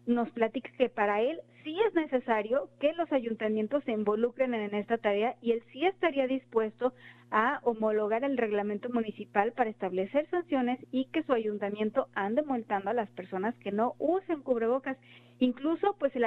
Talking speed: 165 wpm